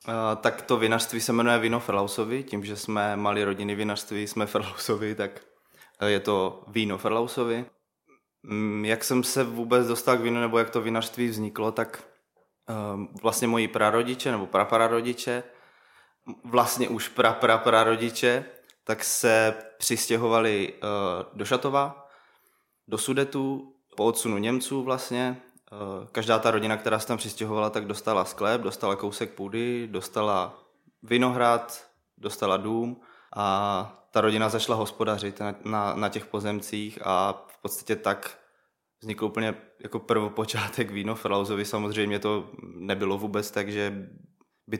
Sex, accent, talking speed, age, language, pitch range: male, native, 130 wpm, 20-39, Czech, 105-115 Hz